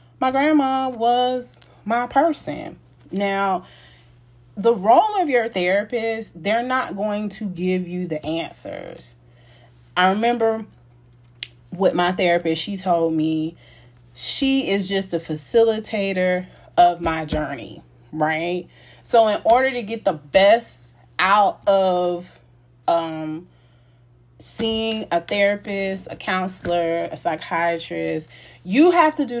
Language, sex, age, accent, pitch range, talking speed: English, female, 30-49, American, 145-205 Hz, 115 wpm